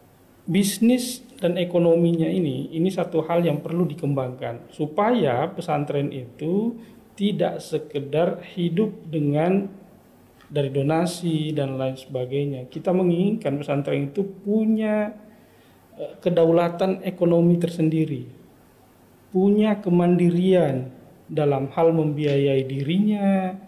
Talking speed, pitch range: 95 wpm, 140-190 Hz